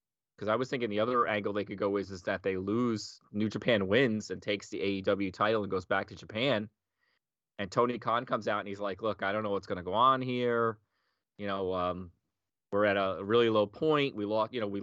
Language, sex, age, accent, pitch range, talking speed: English, male, 30-49, American, 100-120 Hz, 245 wpm